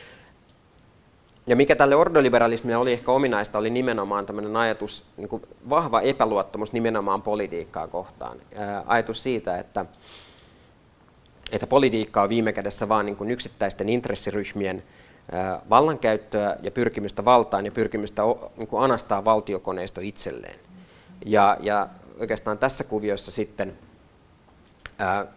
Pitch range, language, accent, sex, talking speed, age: 100-115 Hz, Finnish, native, male, 100 wpm, 30-49